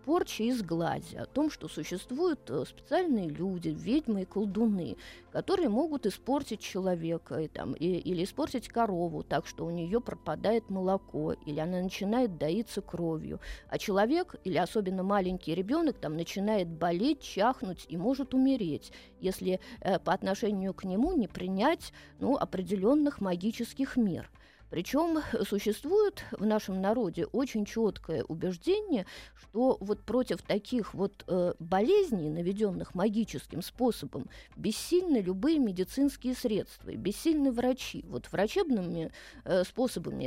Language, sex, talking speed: Russian, female, 120 wpm